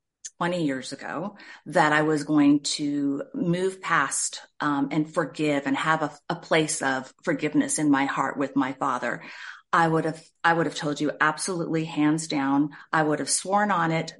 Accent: American